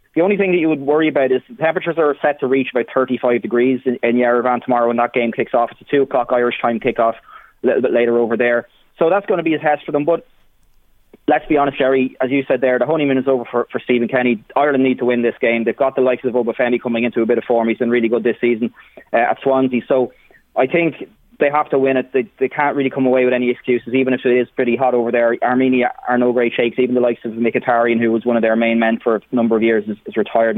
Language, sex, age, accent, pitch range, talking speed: English, male, 20-39, Irish, 115-135 Hz, 280 wpm